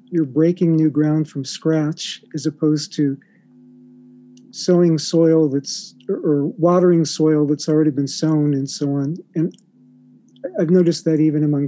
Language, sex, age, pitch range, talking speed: English, male, 50-69, 150-170 Hz, 150 wpm